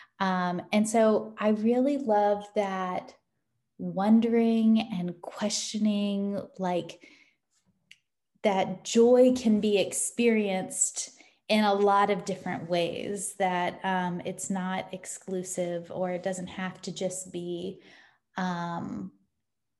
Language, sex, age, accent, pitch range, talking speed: English, female, 20-39, American, 185-220 Hz, 105 wpm